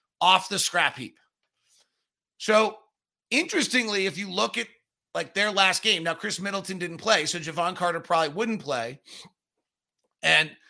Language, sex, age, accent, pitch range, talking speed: English, male, 40-59, American, 160-205 Hz, 145 wpm